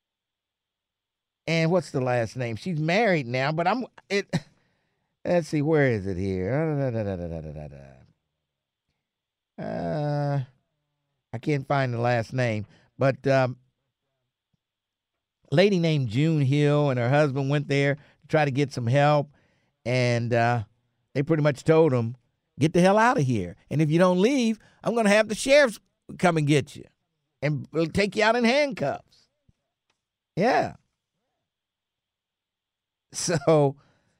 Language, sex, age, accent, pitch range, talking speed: English, male, 50-69, American, 120-170 Hz, 135 wpm